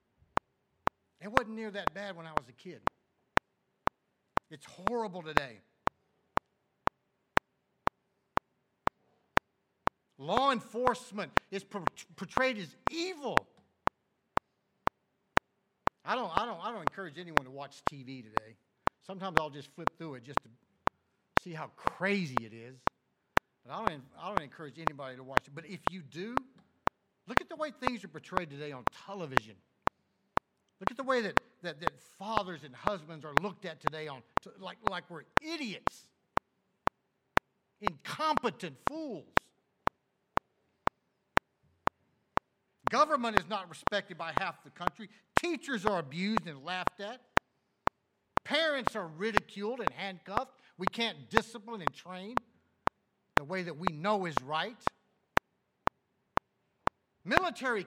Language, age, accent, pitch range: English, 50-69, American, 165-230 Hz